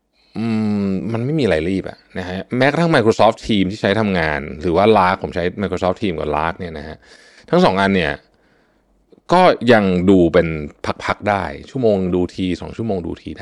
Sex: male